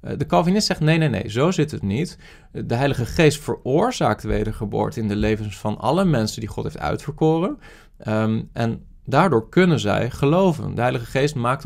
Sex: male